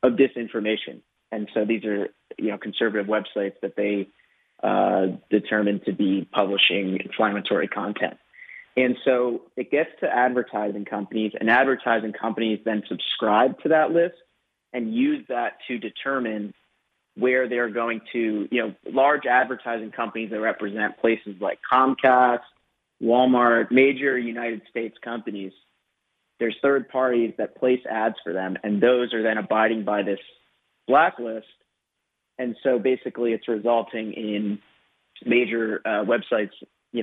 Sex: male